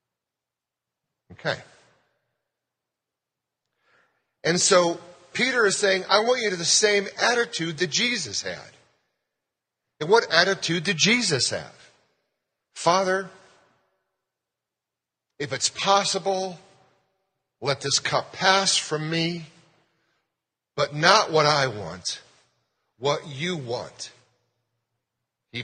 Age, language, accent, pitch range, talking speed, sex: 40-59, English, American, 140-190 Hz, 100 wpm, male